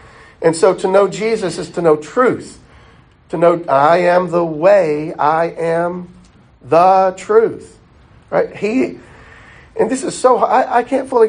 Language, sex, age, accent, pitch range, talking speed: English, male, 50-69, American, 170-230 Hz, 155 wpm